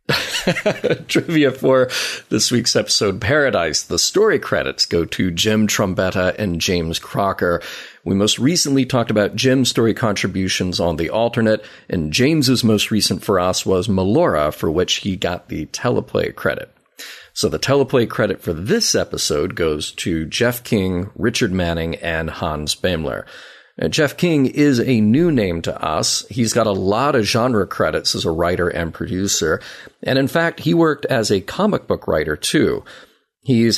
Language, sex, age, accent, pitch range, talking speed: English, male, 40-59, American, 95-120 Hz, 160 wpm